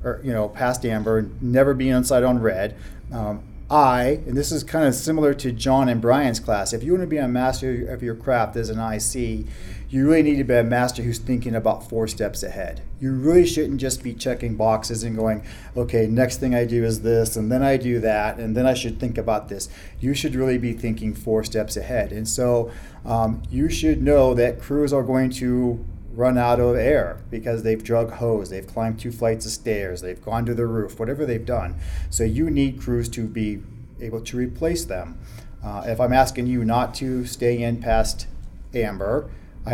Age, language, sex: 40-59, English, male